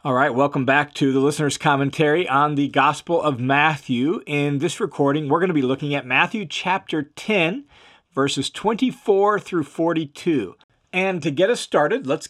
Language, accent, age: English, American, 40-59